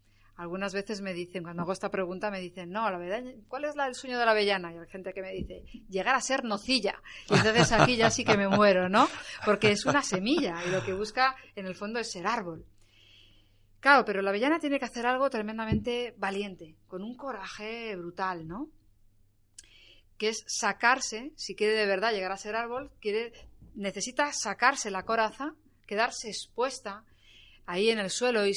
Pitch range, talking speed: 180-225 Hz, 195 wpm